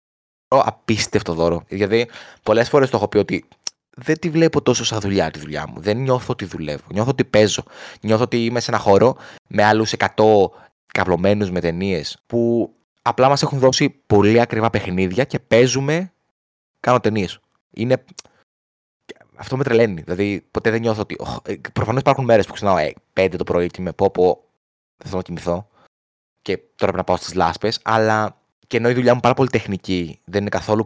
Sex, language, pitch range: male, Greek, 95-120 Hz